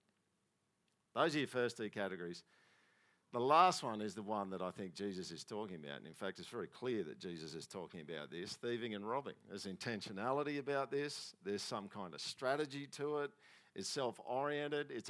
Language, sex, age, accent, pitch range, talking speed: English, male, 50-69, Australian, 100-125 Hz, 190 wpm